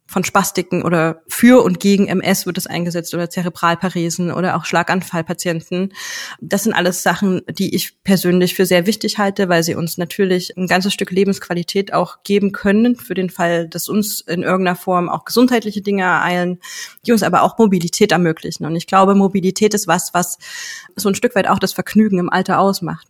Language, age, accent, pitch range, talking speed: German, 20-39, German, 175-200 Hz, 185 wpm